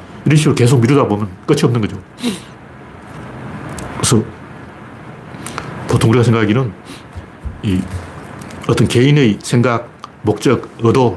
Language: Korean